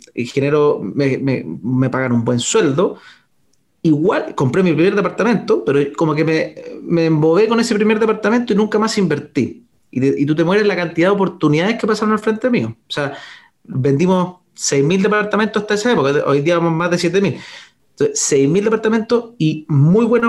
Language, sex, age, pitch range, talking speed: Spanish, male, 30-49, 150-215 Hz, 185 wpm